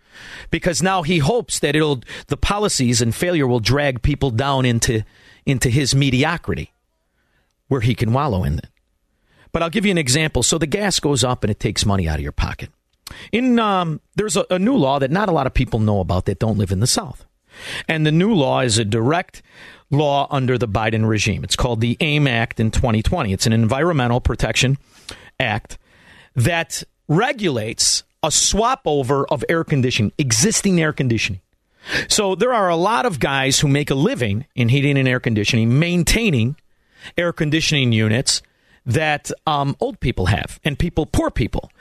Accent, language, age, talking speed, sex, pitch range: American, English, 50-69, 185 wpm, male, 115-160 Hz